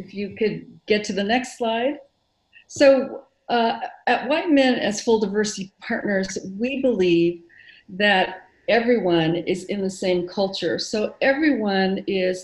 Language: English